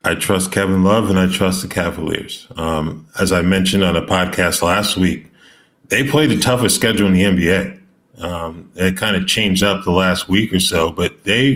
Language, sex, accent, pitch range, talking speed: English, male, American, 90-100 Hz, 195 wpm